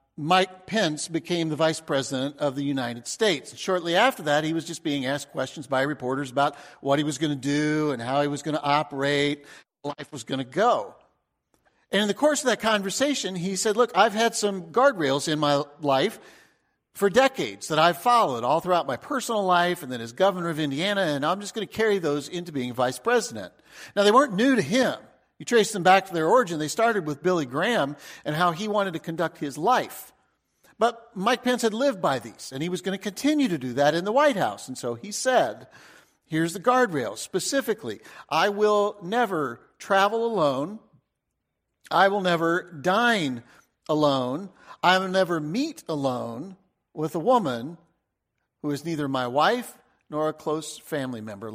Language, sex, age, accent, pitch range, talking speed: English, male, 50-69, American, 145-210 Hz, 195 wpm